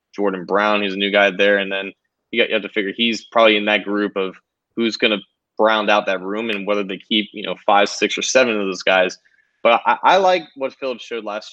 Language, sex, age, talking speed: English, male, 20-39, 250 wpm